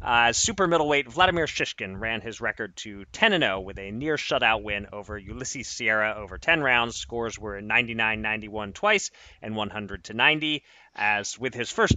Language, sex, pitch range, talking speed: English, male, 110-155 Hz, 150 wpm